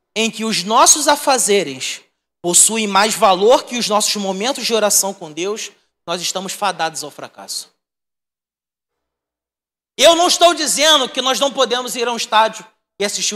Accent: Brazilian